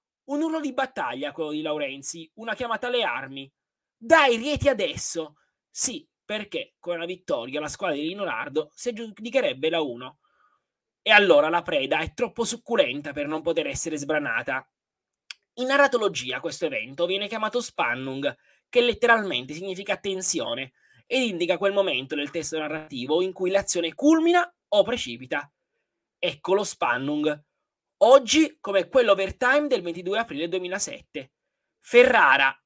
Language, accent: Italian, native